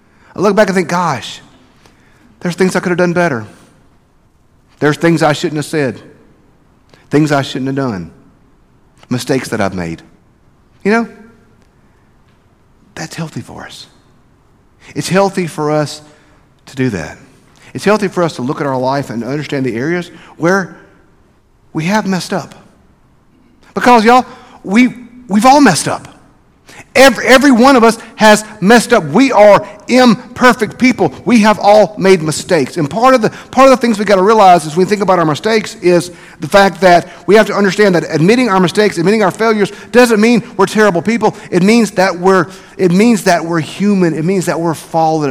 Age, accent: 50-69, American